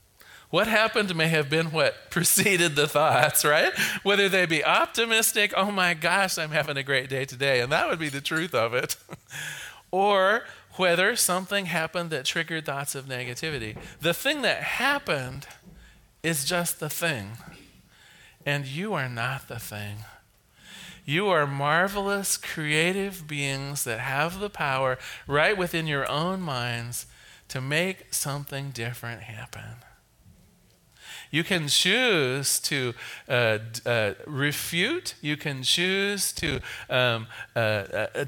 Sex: male